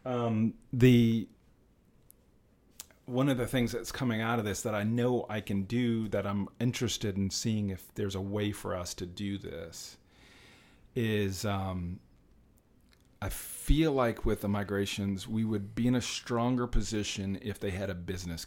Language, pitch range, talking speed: English, 100-120 Hz, 165 wpm